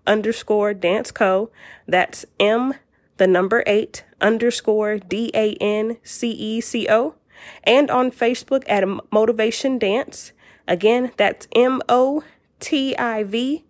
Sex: female